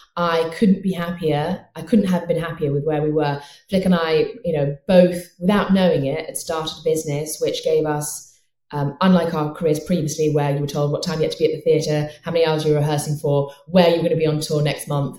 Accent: British